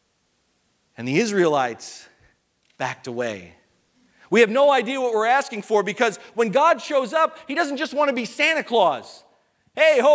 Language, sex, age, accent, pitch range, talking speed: English, male, 40-59, American, 150-250 Hz, 165 wpm